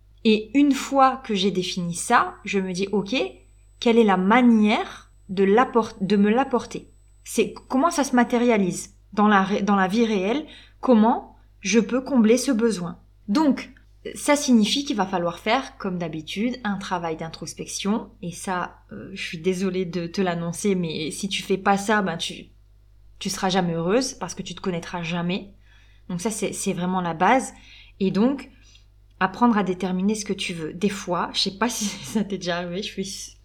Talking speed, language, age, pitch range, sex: 190 wpm, French, 20-39, 175-230 Hz, female